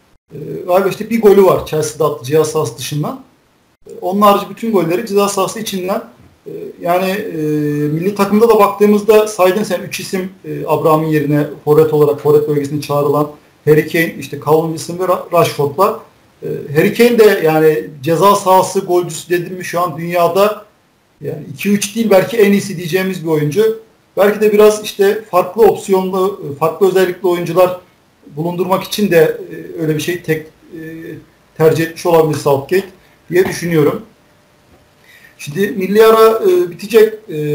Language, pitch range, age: Turkish, 155-195 Hz, 50-69